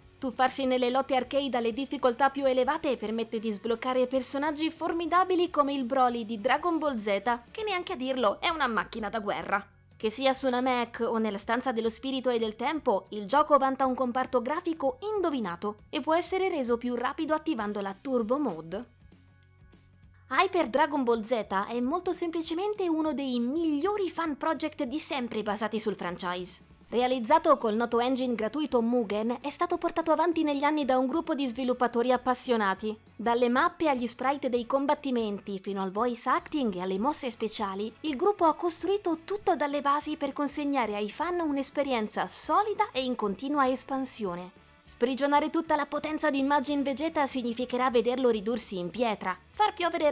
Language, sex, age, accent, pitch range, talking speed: Italian, female, 20-39, native, 235-300 Hz, 165 wpm